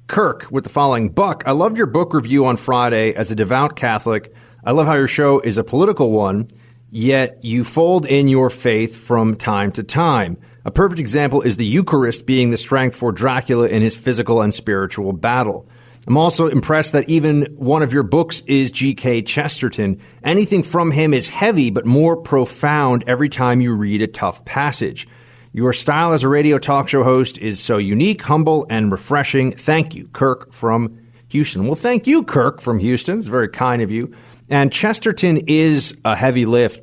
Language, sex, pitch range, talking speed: English, male, 110-145 Hz, 185 wpm